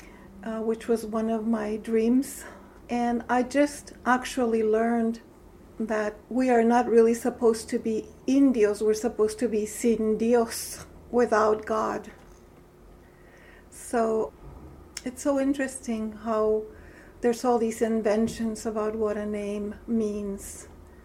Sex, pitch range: female, 215-240 Hz